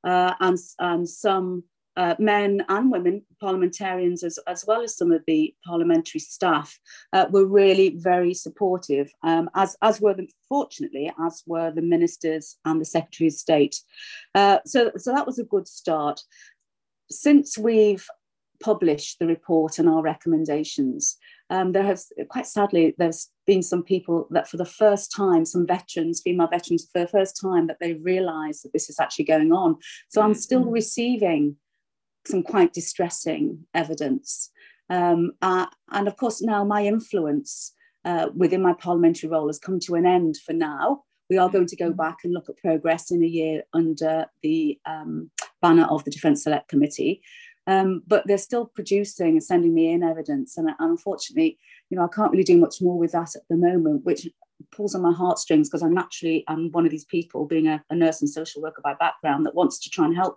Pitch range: 165-220 Hz